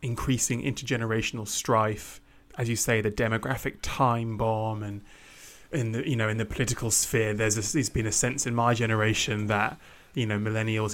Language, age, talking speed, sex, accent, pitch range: English, 20-39, 175 wpm, male, British, 110-125 Hz